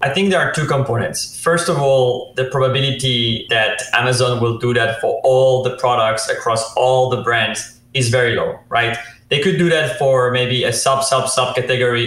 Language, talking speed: English, 195 wpm